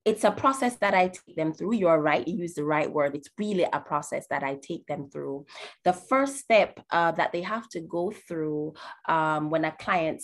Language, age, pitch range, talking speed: English, 20-39, 160-215 Hz, 225 wpm